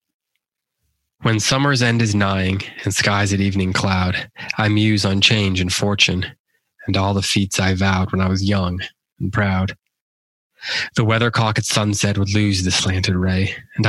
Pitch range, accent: 95-105 Hz, American